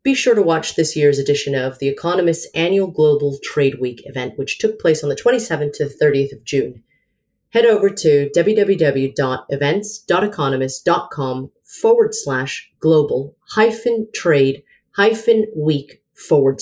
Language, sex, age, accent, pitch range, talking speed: English, female, 30-49, American, 135-175 Hz, 135 wpm